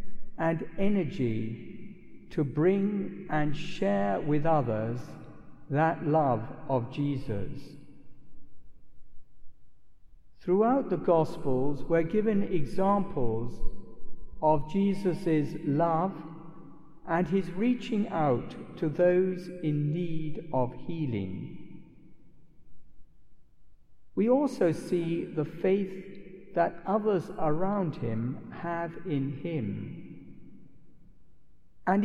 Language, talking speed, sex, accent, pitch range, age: English, 80 wpm, male, British, 150-195 Hz, 60-79